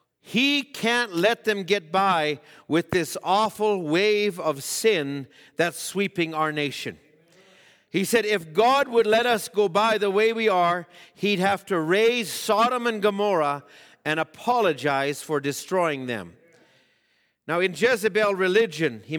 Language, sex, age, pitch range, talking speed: English, male, 50-69, 160-215 Hz, 145 wpm